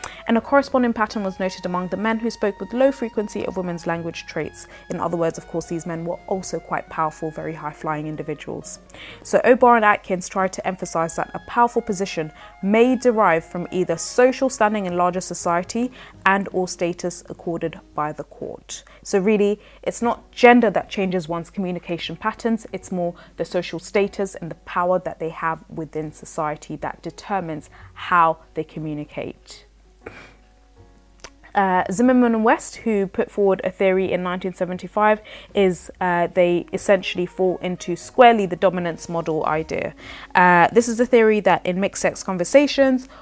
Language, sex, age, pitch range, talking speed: English, female, 20-39, 170-215 Hz, 165 wpm